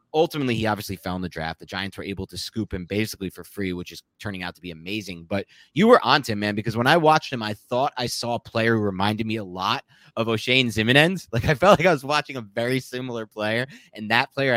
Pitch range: 95-140 Hz